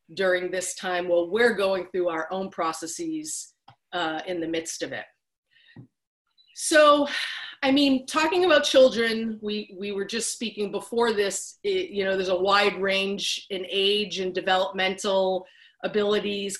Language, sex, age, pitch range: English, female, 30-49, 185-220 Hz